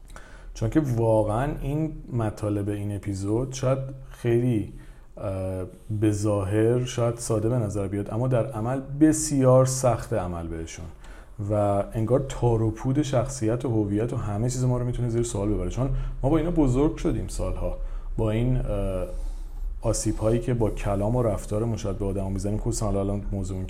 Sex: male